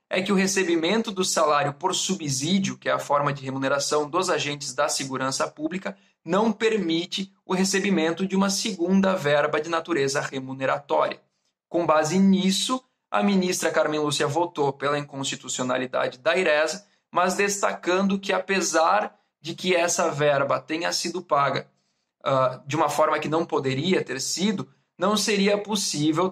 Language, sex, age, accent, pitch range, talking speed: Portuguese, male, 20-39, Brazilian, 145-185 Hz, 145 wpm